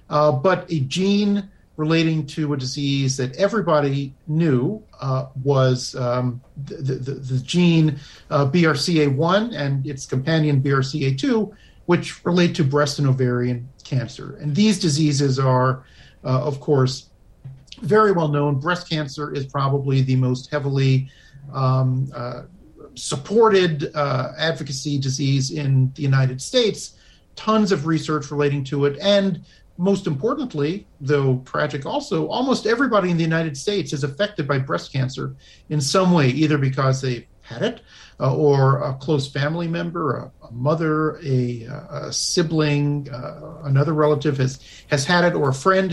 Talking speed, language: 145 wpm, English